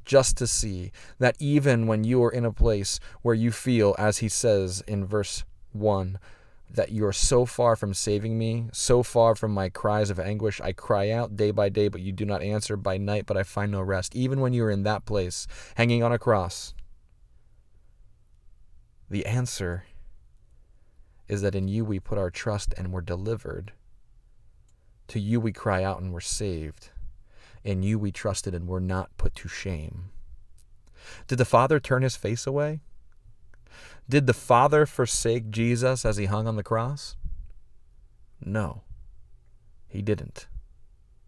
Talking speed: 170 wpm